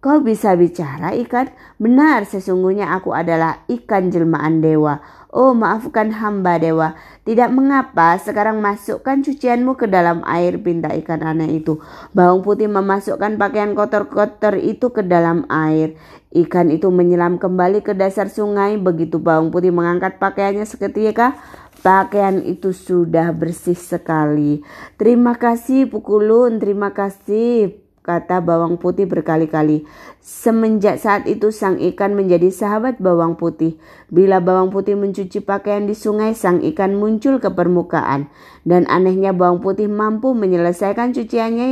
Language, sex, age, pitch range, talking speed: Indonesian, female, 20-39, 170-215 Hz, 130 wpm